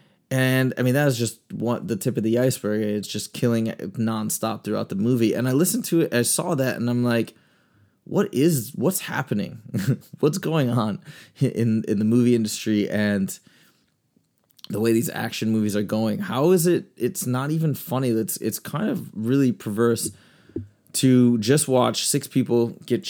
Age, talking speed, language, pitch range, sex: 20-39, 180 wpm, English, 115-135 Hz, male